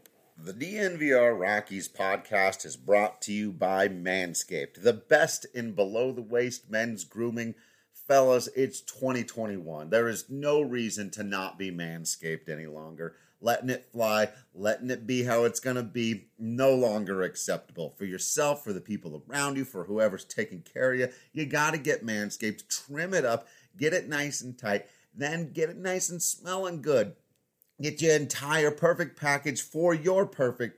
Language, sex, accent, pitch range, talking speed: English, male, American, 105-150 Hz, 165 wpm